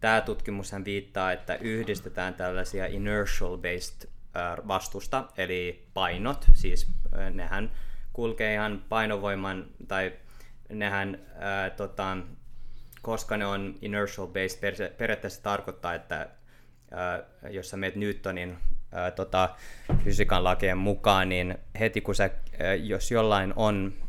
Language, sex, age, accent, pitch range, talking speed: Finnish, male, 20-39, native, 90-105 Hz, 105 wpm